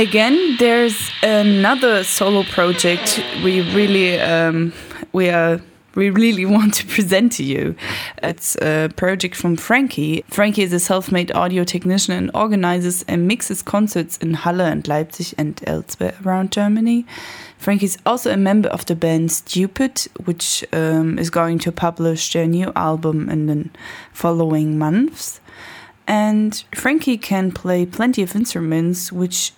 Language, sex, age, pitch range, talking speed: French, female, 10-29, 165-200 Hz, 145 wpm